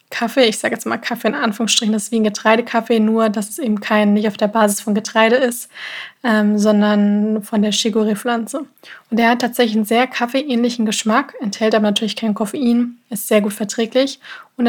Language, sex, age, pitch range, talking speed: German, female, 20-39, 215-240 Hz, 200 wpm